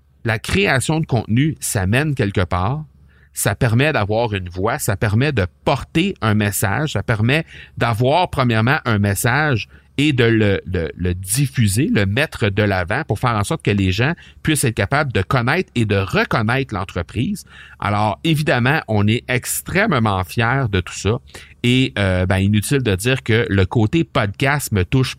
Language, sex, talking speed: French, male, 165 wpm